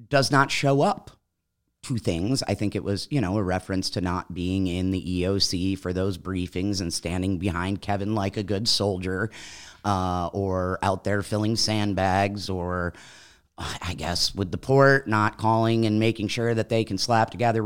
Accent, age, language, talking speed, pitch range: American, 30-49, English, 180 wpm, 95-135 Hz